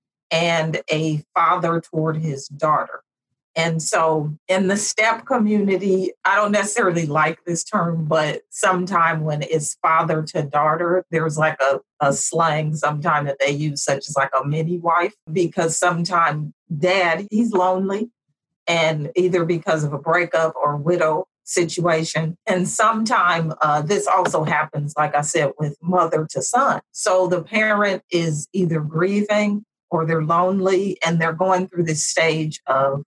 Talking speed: 150 wpm